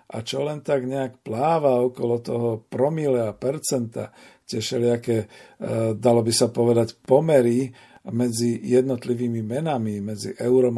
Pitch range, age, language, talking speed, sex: 115-130 Hz, 50-69, Slovak, 135 wpm, male